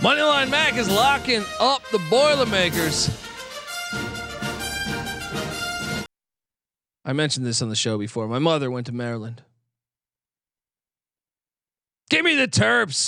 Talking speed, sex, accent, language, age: 105 wpm, male, American, English, 40-59